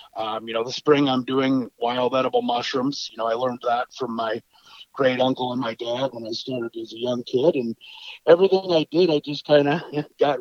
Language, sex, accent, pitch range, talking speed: English, male, American, 130-155 Hz, 220 wpm